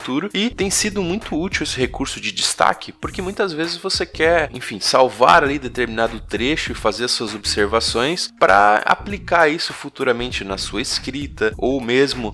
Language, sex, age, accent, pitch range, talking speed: Portuguese, male, 20-39, Brazilian, 105-150 Hz, 155 wpm